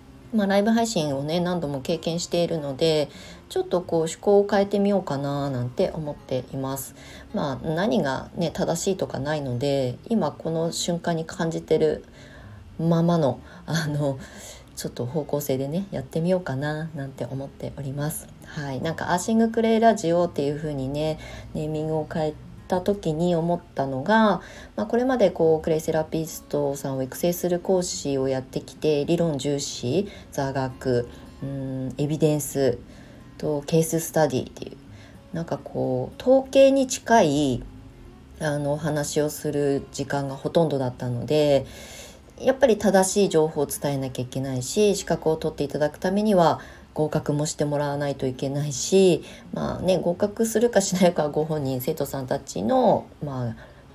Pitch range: 140-175 Hz